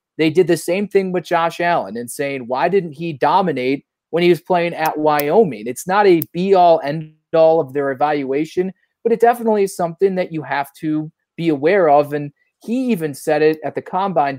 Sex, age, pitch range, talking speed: male, 30-49, 145-180 Hz, 200 wpm